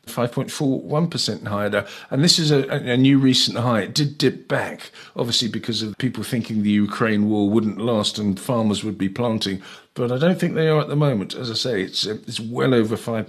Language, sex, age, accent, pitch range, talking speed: English, male, 50-69, British, 105-130 Hz, 225 wpm